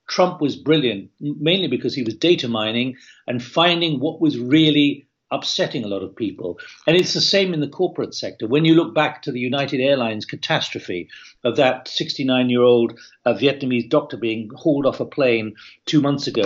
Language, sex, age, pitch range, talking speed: English, male, 60-79, 120-155 Hz, 180 wpm